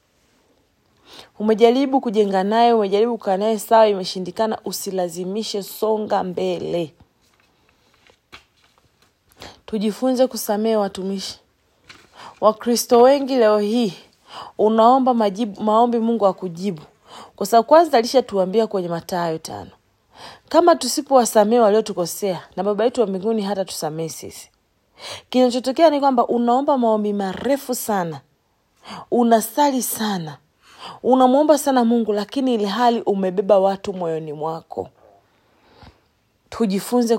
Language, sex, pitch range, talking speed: English, female, 185-240 Hz, 95 wpm